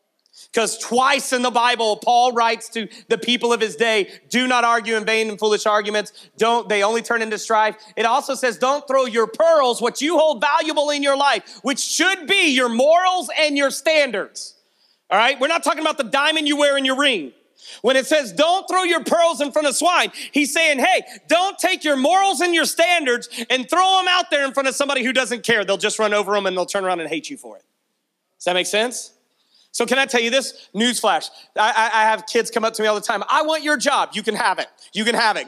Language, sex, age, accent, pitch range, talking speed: English, male, 40-59, American, 215-270 Hz, 245 wpm